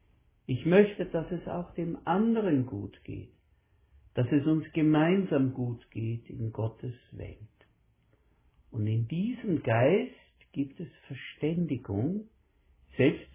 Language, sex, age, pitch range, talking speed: German, male, 60-79, 100-150 Hz, 115 wpm